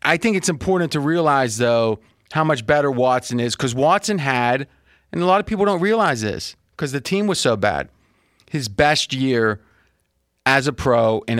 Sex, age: male, 30-49